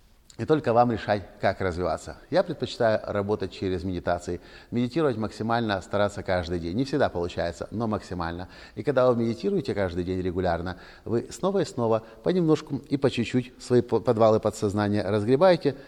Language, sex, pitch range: Russian, male, 95-125 Hz